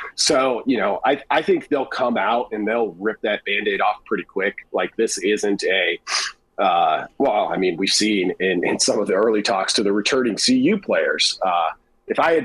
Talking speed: 205 wpm